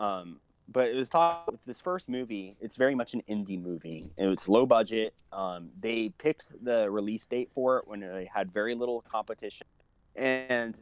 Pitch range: 100-125 Hz